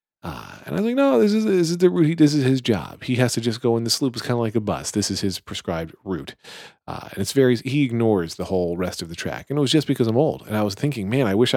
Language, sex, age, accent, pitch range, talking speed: English, male, 40-59, American, 85-115 Hz, 315 wpm